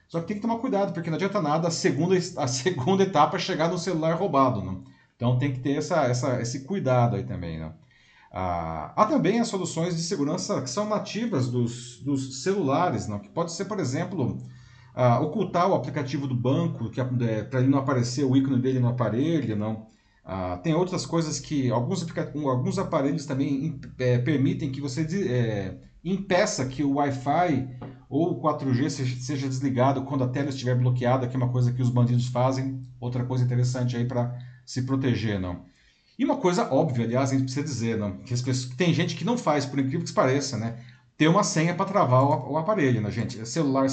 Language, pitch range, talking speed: Portuguese, 125-165 Hz, 195 wpm